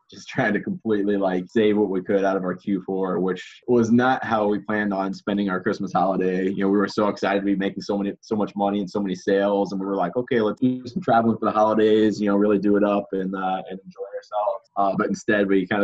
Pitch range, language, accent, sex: 95-110 Hz, English, American, male